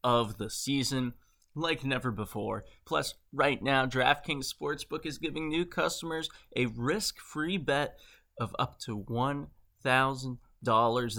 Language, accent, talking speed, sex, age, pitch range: English, American, 125 wpm, male, 20-39, 115-155 Hz